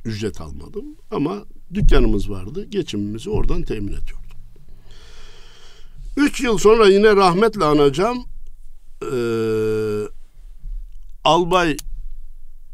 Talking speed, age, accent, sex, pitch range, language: 80 wpm, 60-79, native, male, 105-155 Hz, Turkish